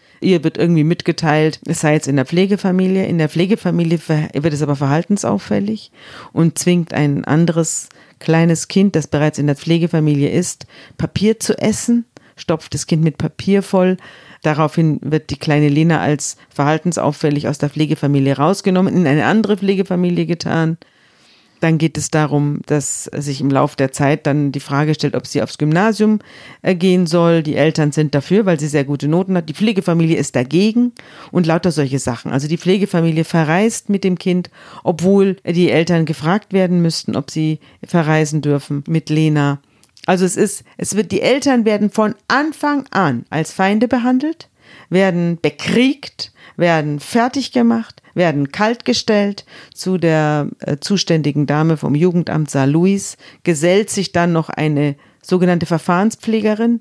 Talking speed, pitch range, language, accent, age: 155 wpm, 150-190 Hz, German, German, 40-59